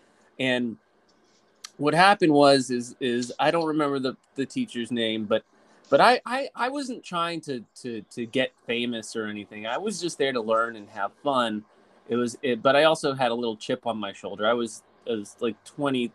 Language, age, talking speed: English, 20-39, 200 wpm